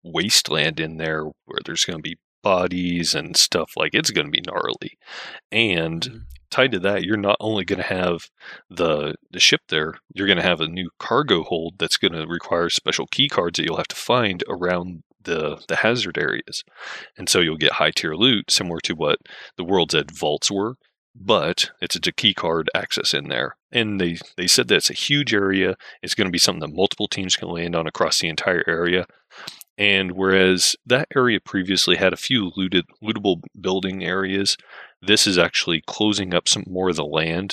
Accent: American